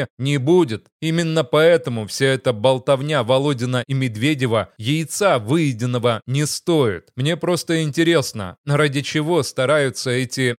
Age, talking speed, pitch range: 20-39, 120 wpm, 130-160 Hz